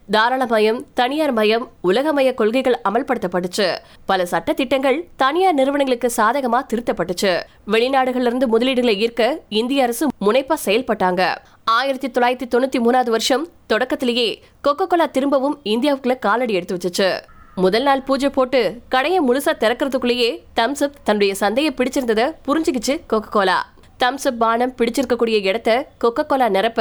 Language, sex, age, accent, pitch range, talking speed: Tamil, female, 20-39, native, 220-275 Hz, 95 wpm